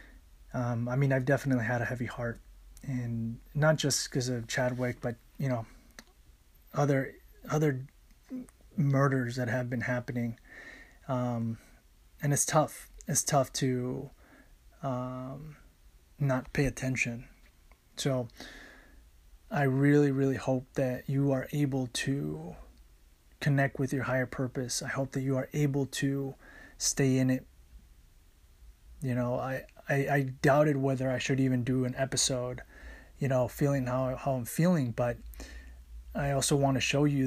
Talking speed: 140 wpm